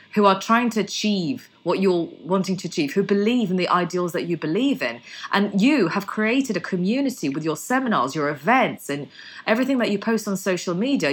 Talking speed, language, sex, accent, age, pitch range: 205 wpm, English, female, British, 20-39, 180-240 Hz